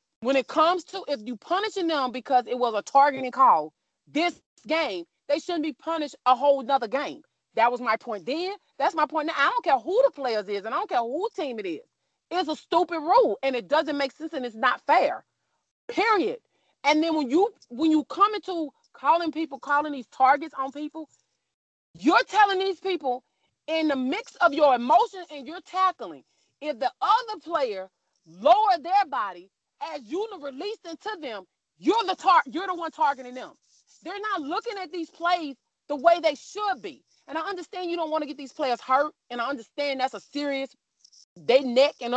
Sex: female